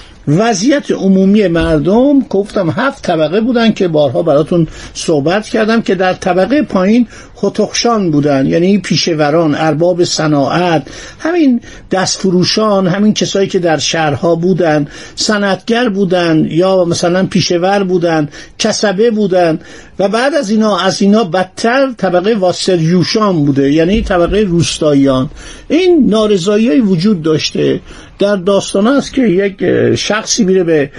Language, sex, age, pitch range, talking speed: Persian, male, 50-69, 165-210 Hz, 130 wpm